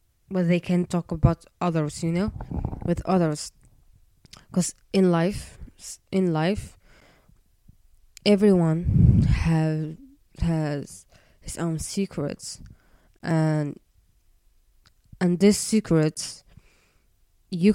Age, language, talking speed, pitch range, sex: 20-39, English, 90 wpm, 150-185 Hz, female